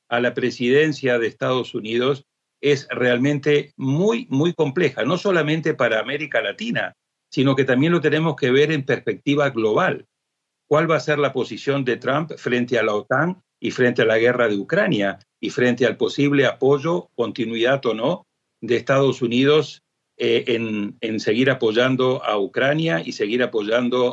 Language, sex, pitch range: Spanish, male, 125-155 Hz